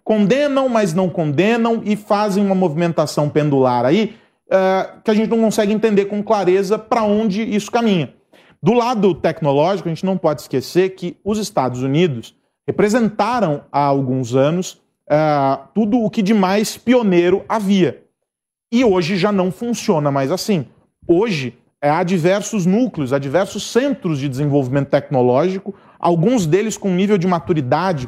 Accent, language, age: Brazilian, Portuguese, 40-59